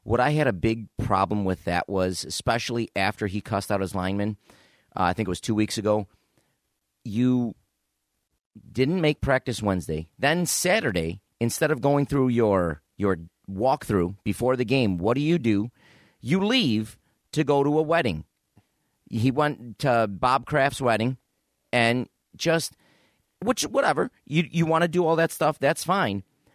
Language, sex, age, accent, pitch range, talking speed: English, male, 40-59, American, 105-140 Hz, 165 wpm